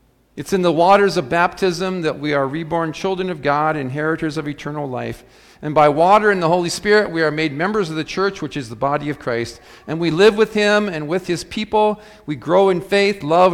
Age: 50-69